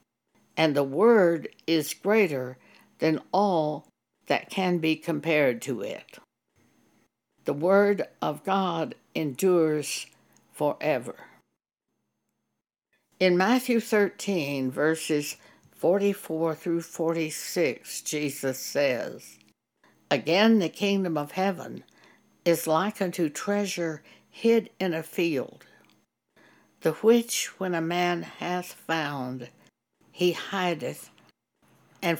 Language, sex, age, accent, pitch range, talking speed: English, female, 60-79, American, 155-200 Hz, 95 wpm